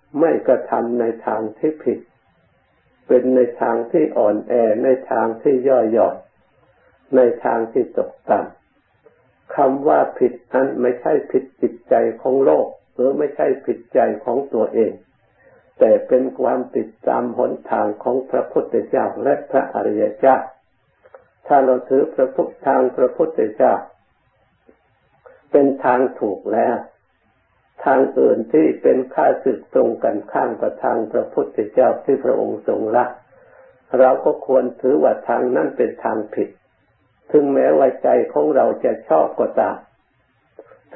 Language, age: Thai, 60-79